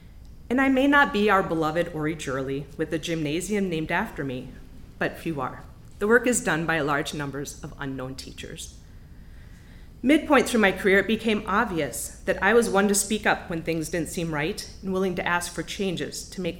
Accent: American